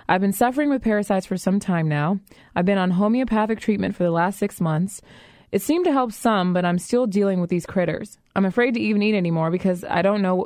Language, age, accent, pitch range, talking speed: English, 20-39, American, 170-215 Hz, 235 wpm